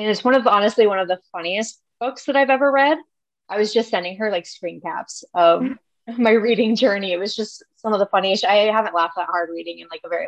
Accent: American